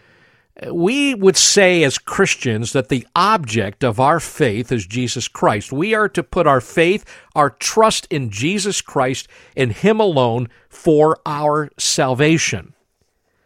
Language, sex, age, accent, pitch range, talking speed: English, male, 50-69, American, 125-165 Hz, 140 wpm